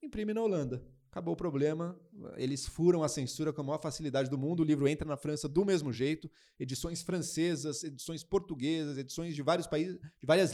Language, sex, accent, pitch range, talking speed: Portuguese, male, Brazilian, 135-170 Hz, 195 wpm